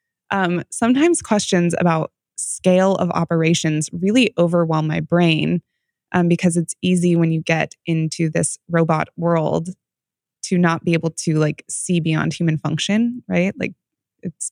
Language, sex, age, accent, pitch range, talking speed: English, female, 20-39, American, 155-175 Hz, 145 wpm